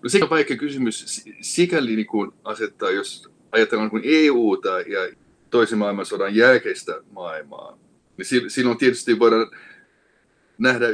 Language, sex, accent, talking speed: Finnish, male, native, 125 wpm